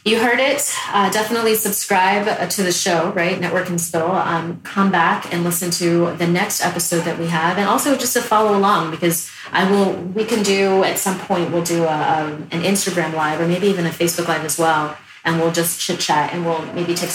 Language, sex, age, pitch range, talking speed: English, female, 30-49, 165-190 Hz, 215 wpm